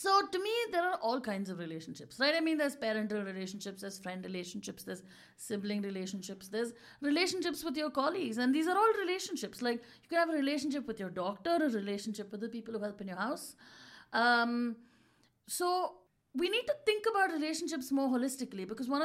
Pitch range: 230-305 Hz